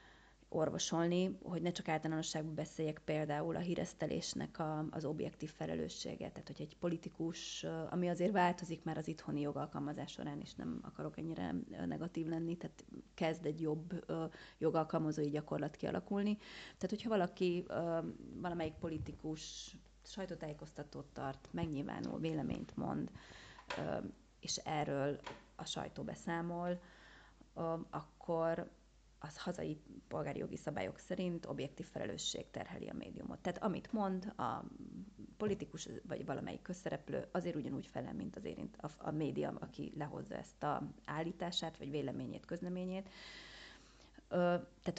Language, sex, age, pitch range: Hungarian, female, 30-49, 160-180 Hz